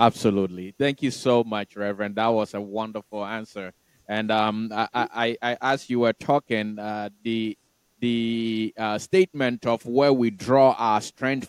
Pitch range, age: 110-140 Hz, 20-39